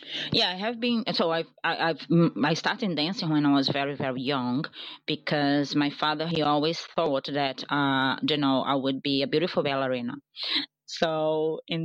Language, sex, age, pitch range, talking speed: English, female, 30-49, 140-170 Hz, 175 wpm